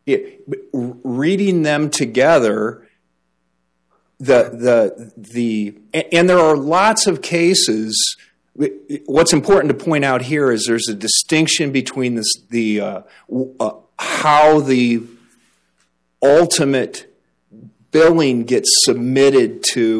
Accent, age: American, 40-59